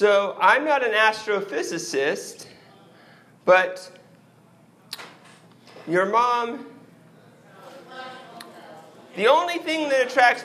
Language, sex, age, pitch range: English, male, 40-59, 190-310 Hz